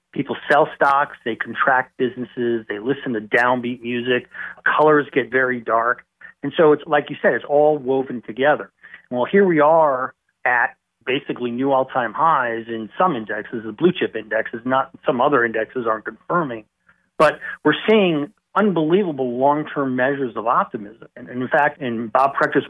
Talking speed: 165 wpm